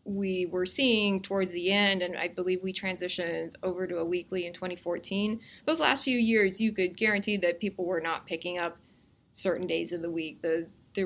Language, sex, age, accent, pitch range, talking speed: English, female, 20-39, American, 175-215 Hz, 200 wpm